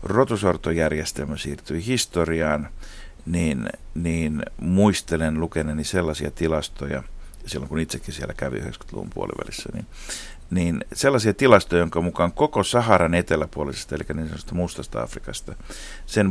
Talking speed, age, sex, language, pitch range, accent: 110 wpm, 60-79, male, Finnish, 75-90 Hz, native